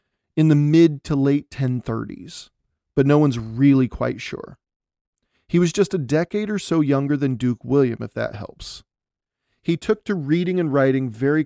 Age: 40-59